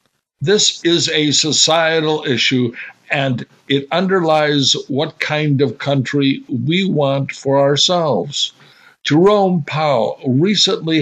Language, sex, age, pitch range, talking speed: English, male, 60-79, 130-160 Hz, 105 wpm